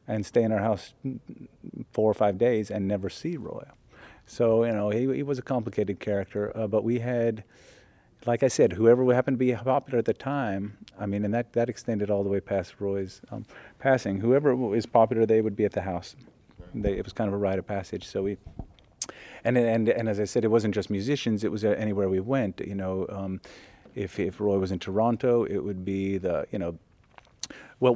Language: English